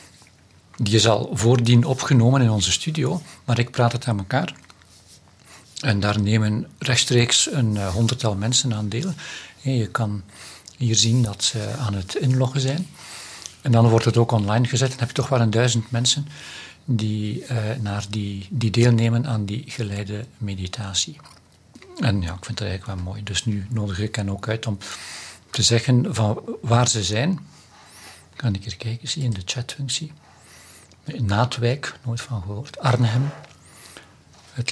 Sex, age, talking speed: male, 60-79, 170 wpm